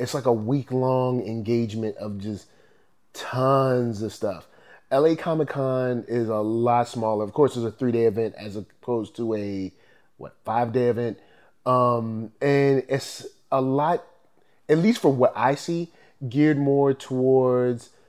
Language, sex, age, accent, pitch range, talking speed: English, male, 30-49, American, 110-135 Hz, 145 wpm